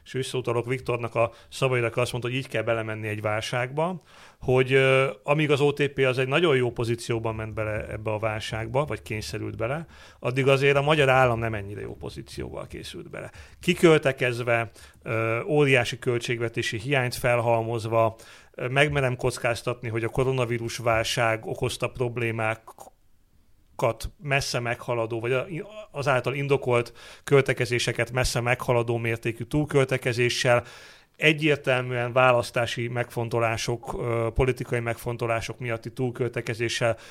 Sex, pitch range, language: male, 115-135 Hz, Hungarian